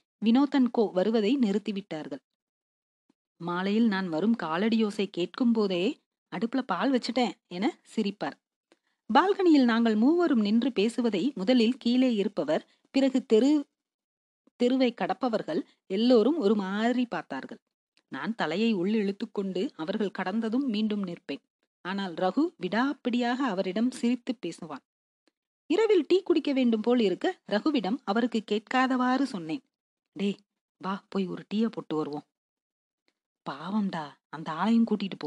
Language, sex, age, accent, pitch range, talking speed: Tamil, female, 40-59, native, 185-250 Hz, 110 wpm